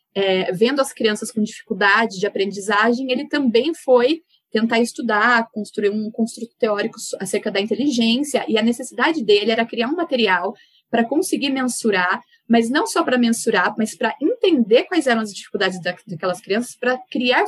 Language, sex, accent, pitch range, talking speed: Portuguese, female, Brazilian, 205-255 Hz, 165 wpm